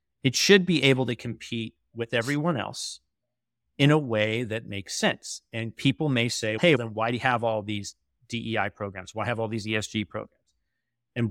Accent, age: American, 30-49